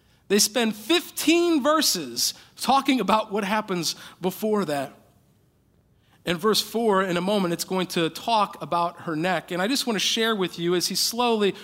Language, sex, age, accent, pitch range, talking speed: English, male, 40-59, American, 175-215 Hz, 175 wpm